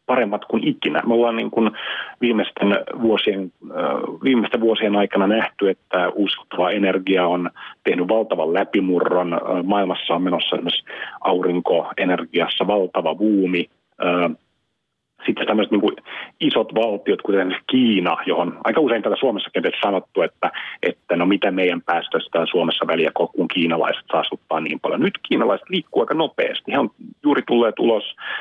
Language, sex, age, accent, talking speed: Finnish, male, 40-59, native, 135 wpm